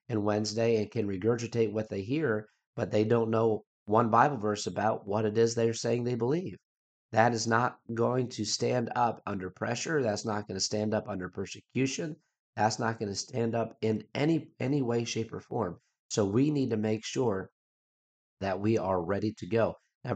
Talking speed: 195 wpm